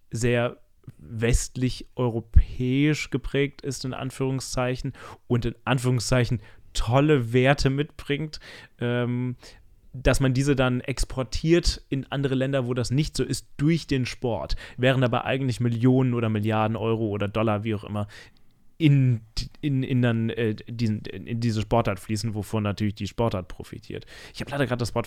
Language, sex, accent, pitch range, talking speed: German, male, German, 105-125 Hz, 150 wpm